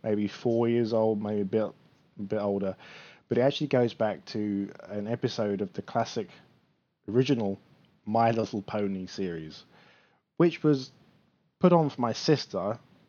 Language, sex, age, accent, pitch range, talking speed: English, male, 20-39, British, 100-130 Hz, 150 wpm